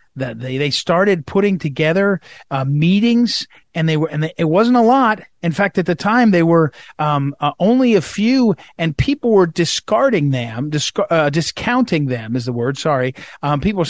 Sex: male